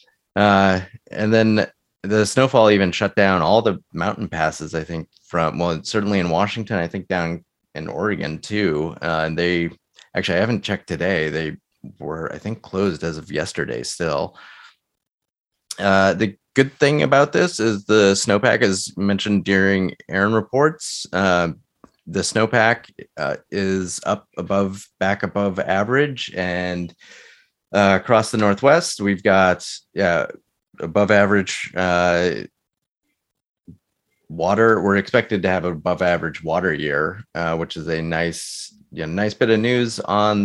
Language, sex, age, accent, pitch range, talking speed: English, male, 30-49, American, 85-105 Hz, 145 wpm